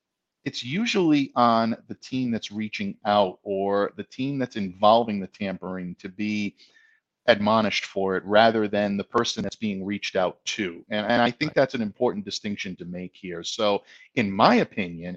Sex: male